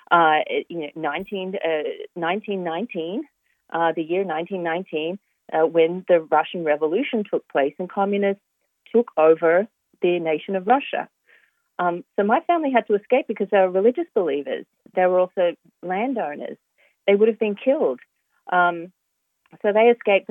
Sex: female